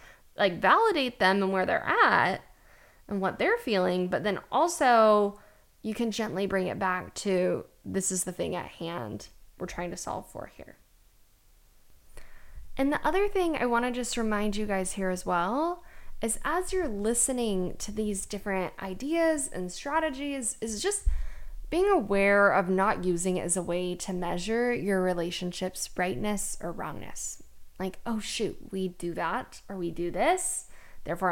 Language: English